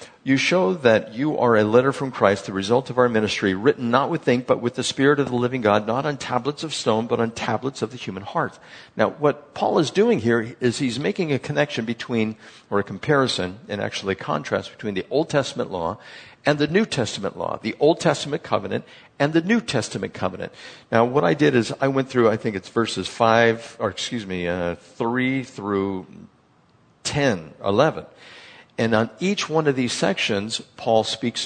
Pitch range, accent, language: 105-135 Hz, American, English